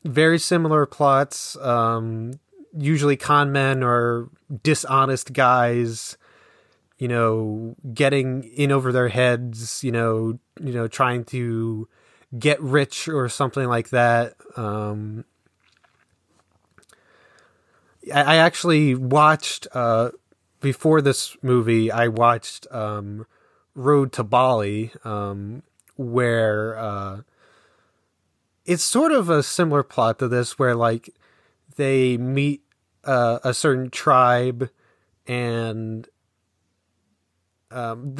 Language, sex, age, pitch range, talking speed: English, male, 20-39, 115-140 Hz, 100 wpm